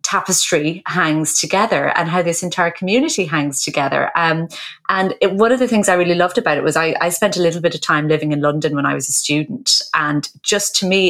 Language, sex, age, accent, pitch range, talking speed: English, female, 30-49, British, 150-180 Hz, 225 wpm